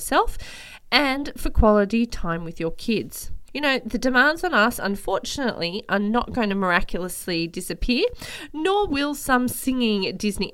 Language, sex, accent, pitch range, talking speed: English, female, Australian, 185-285 Hz, 150 wpm